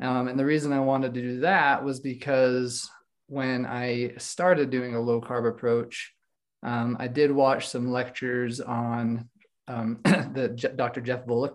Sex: male